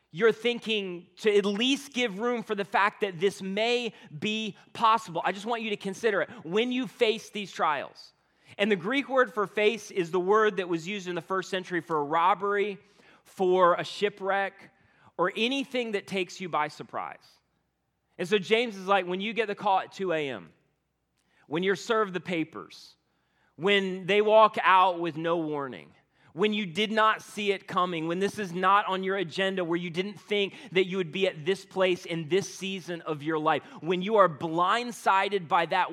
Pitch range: 170-205 Hz